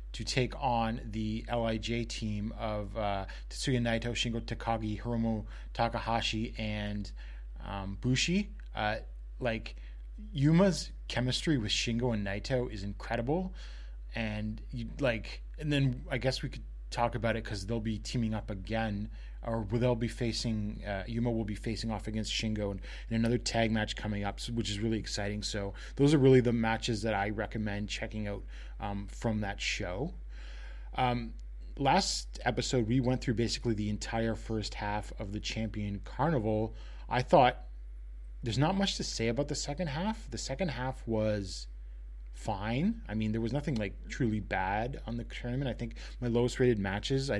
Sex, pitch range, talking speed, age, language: male, 105-120 Hz, 165 wpm, 20-39, English